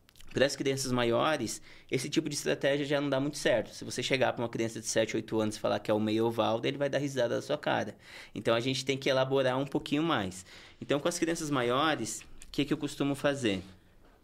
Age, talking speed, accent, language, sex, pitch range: 20-39, 235 wpm, Brazilian, Portuguese, male, 115-155 Hz